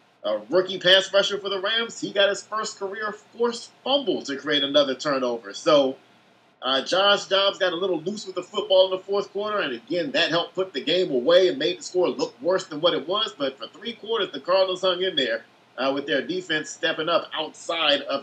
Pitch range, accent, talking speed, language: 165-200 Hz, American, 225 wpm, English